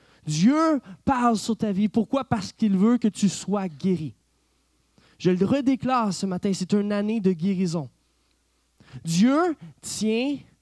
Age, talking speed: 20-39, 140 wpm